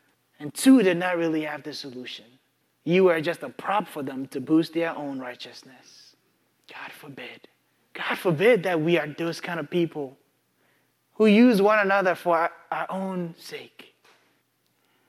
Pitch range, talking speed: 150-200 Hz, 155 wpm